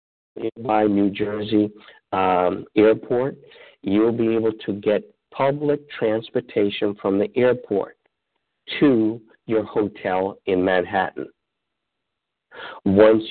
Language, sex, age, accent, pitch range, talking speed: English, male, 50-69, American, 100-115 Hz, 95 wpm